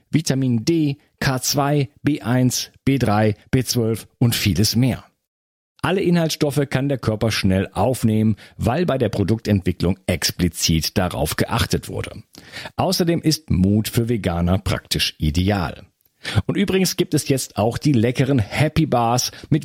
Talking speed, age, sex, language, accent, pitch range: 130 wpm, 50-69, male, German, German, 105-145 Hz